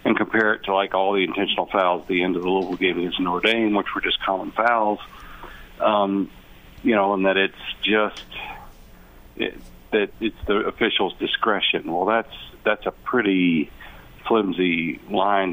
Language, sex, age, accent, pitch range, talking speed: English, male, 50-69, American, 90-105 Hz, 170 wpm